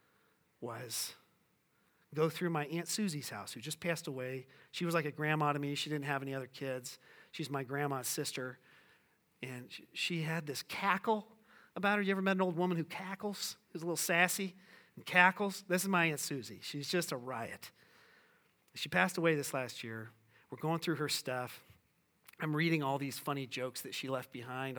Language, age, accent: English, 40-59, American